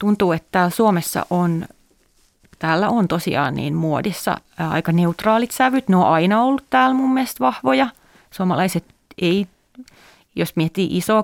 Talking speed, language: 140 wpm, Finnish